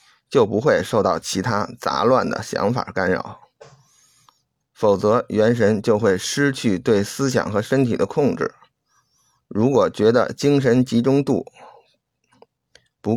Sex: male